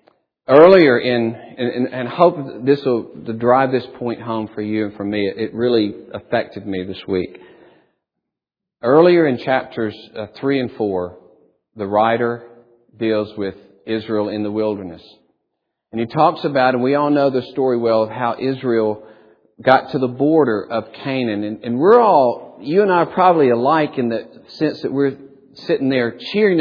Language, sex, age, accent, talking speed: English, male, 50-69, American, 175 wpm